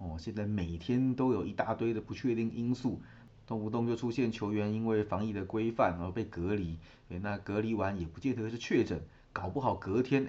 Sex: male